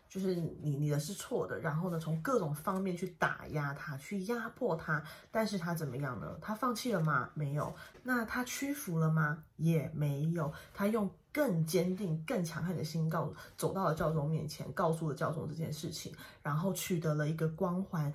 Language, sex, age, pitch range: Chinese, female, 20-39, 155-190 Hz